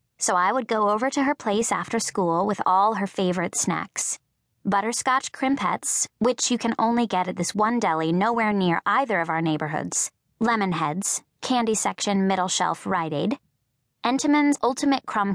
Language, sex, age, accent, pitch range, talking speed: English, female, 20-39, American, 175-240 Hz, 170 wpm